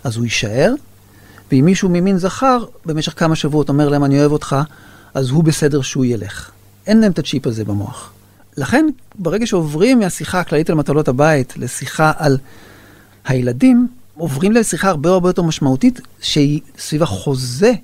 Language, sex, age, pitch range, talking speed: Hebrew, male, 40-59, 135-180 Hz, 155 wpm